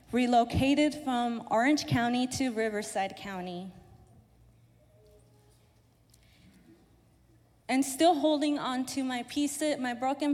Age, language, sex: 20-39, English, female